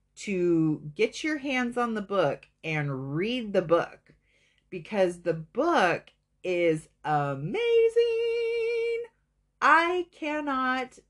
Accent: American